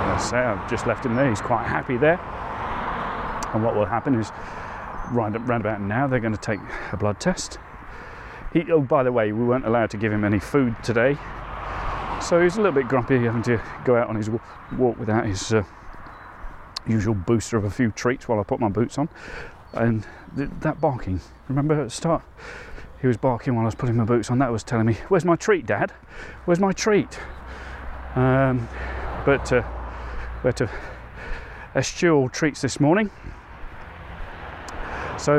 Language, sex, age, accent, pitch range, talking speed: English, male, 40-59, British, 100-130 Hz, 185 wpm